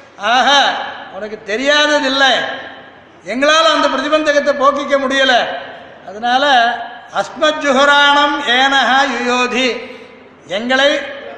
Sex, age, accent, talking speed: male, 60-79, native, 70 wpm